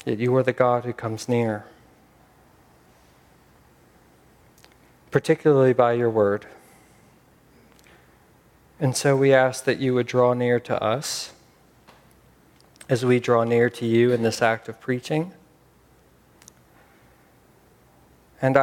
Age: 40-59